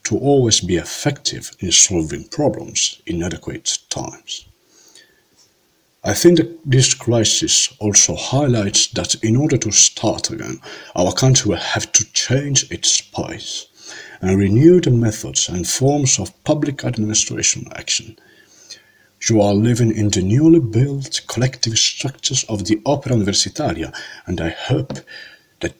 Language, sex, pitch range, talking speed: Italian, male, 100-140 Hz, 135 wpm